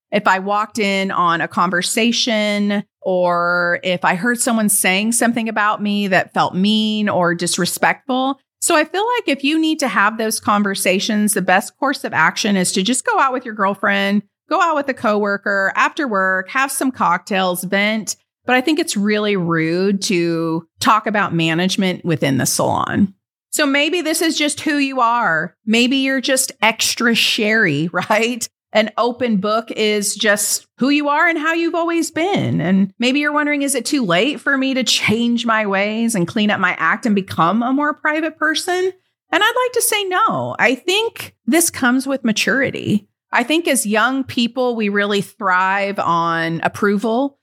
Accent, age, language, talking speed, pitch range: American, 40-59, English, 180 wpm, 190-265 Hz